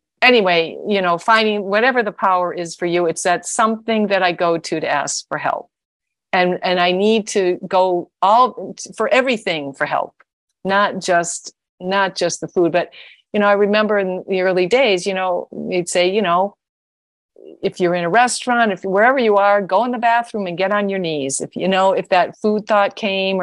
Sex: female